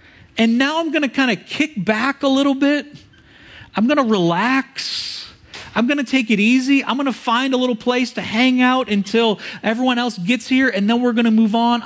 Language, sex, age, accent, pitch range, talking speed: English, male, 40-59, American, 150-235 Hz, 225 wpm